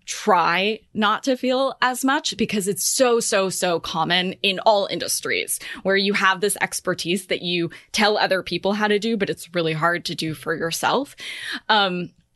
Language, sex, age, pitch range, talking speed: English, female, 20-39, 170-215 Hz, 180 wpm